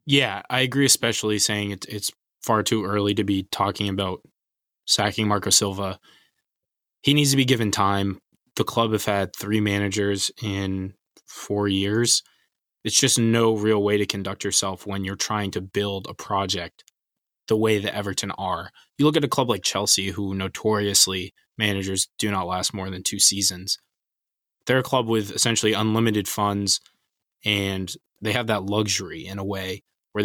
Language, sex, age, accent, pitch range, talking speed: English, male, 20-39, American, 100-115 Hz, 165 wpm